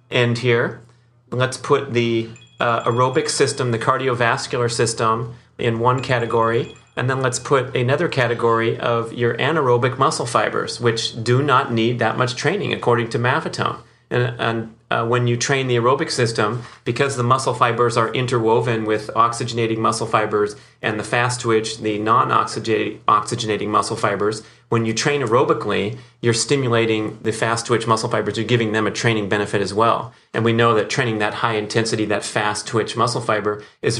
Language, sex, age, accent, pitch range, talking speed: English, male, 30-49, American, 115-125 Hz, 170 wpm